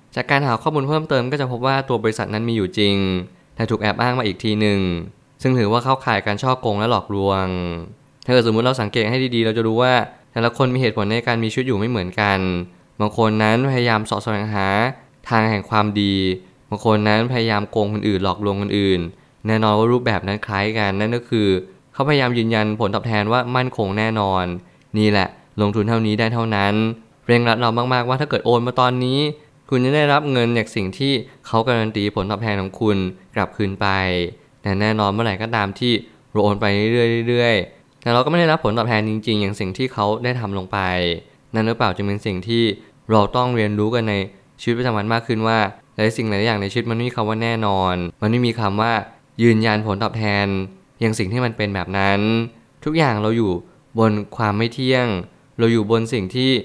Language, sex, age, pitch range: Thai, male, 20-39, 105-125 Hz